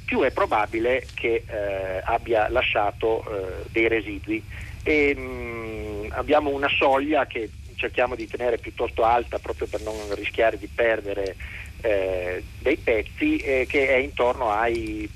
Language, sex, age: Italian, male, 40-59